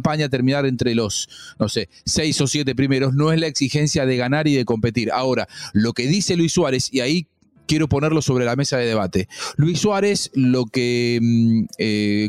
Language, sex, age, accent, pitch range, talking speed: Spanish, male, 40-59, Argentinian, 120-175 Hz, 190 wpm